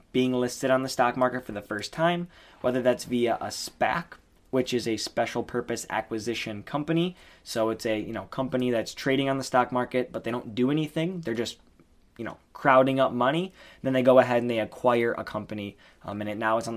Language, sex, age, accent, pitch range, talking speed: English, male, 10-29, American, 110-130 Hz, 220 wpm